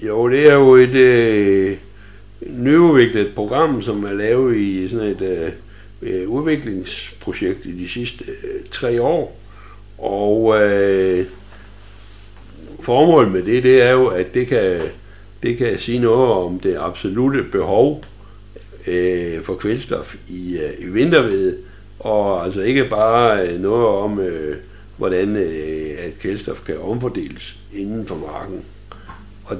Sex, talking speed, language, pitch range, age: male, 110 wpm, Danish, 95-120 Hz, 60-79